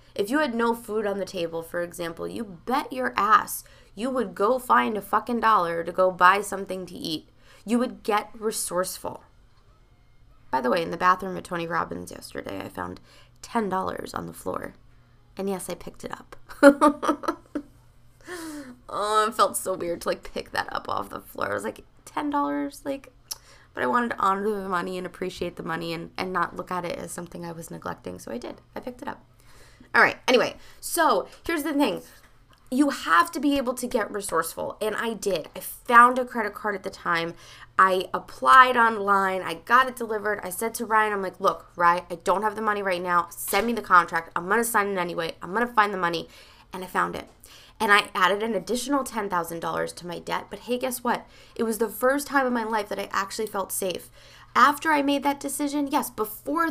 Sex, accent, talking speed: female, American, 215 wpm